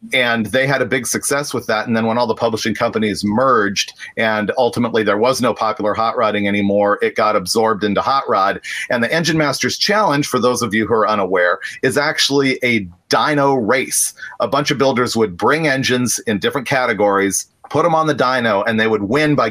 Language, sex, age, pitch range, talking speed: English, male, 40-59, 105-130 Hz, 210 wpm